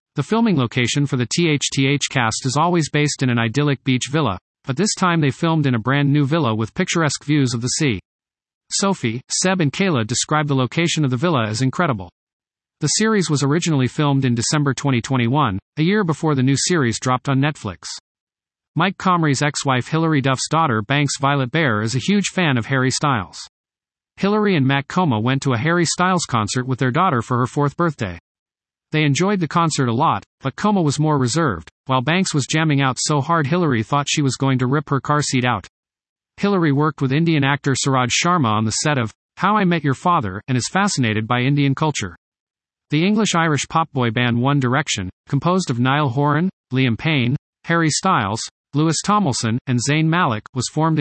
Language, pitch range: English, 125-160 Hz